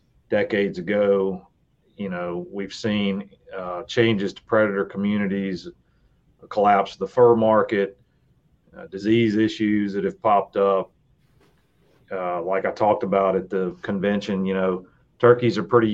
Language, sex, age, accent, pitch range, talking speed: English, male, 40-59, American, 95-110 Hz, 135 wpm